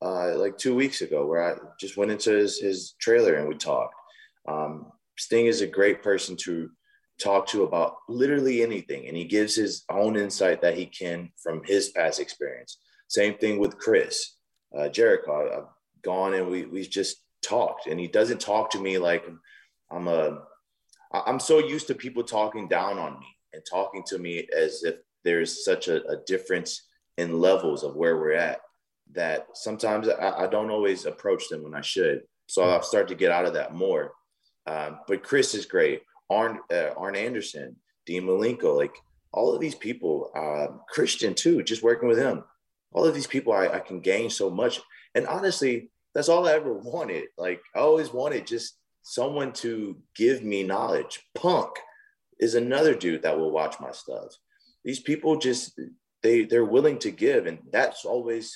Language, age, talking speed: English, 30-49, 185 wpm